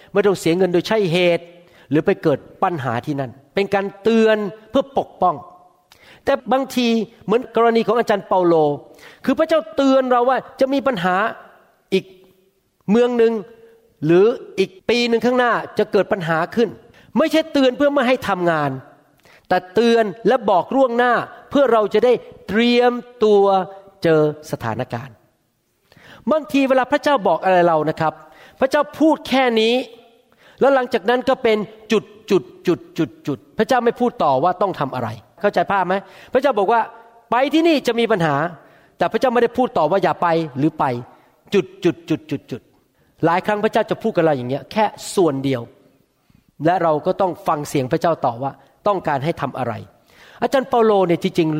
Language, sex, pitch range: Thai, male, 155-235 Hz